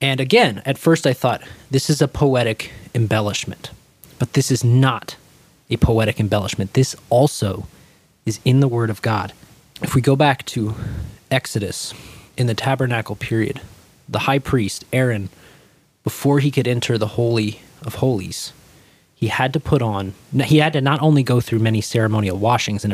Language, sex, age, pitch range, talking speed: English, male, 20-39, 110-140 Hz, 165 wpm